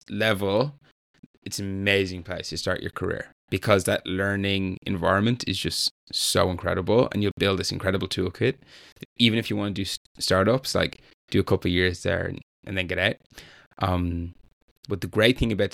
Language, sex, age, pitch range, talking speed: English, male, 10-29, 90-105 Hz, 185 wpm